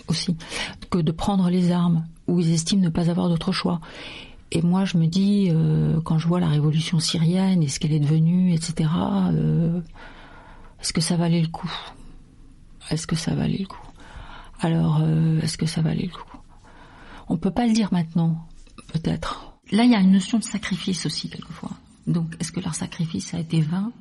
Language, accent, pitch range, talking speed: French, French, 165-200 Hz, 195 wpm